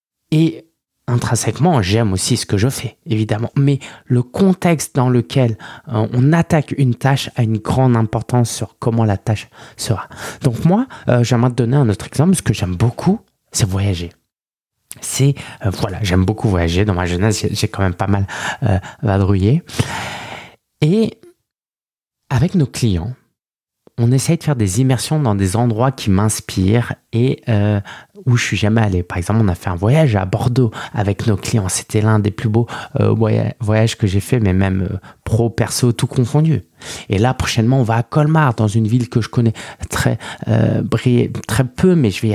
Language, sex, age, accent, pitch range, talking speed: French, male, 20-39, French, 105-130 Hz, 190 wpm